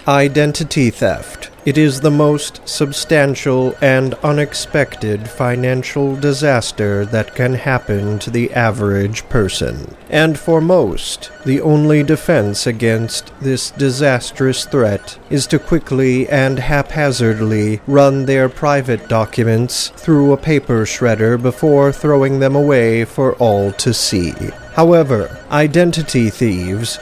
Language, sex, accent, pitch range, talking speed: English, male, American, 115-145 Hz, 115 wpm